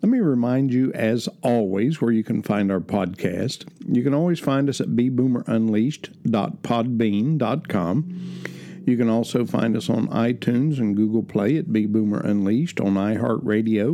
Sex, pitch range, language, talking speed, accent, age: male, 110-155 Hz, English, 140 wpm, American, 60-79